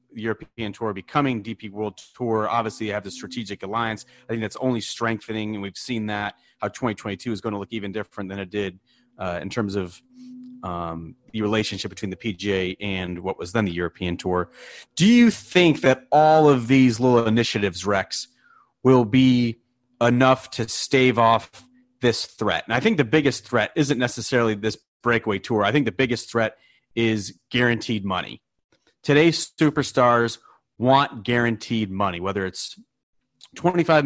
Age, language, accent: 30-49, English, American